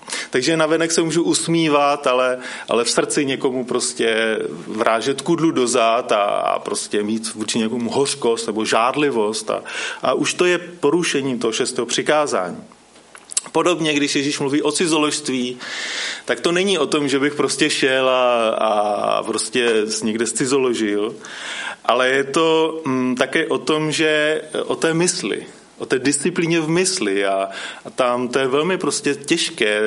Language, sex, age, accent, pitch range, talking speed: Czech, male, 30-49, native, 120-165 Hz, 155 wpm